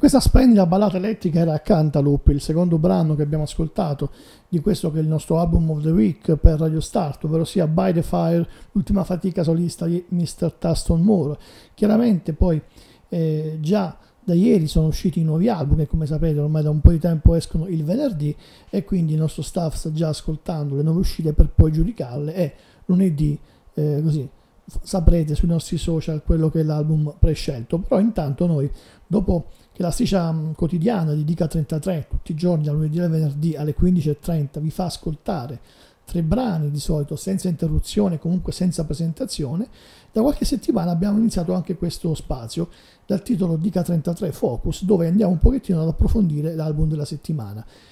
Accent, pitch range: native, 155-180 Hz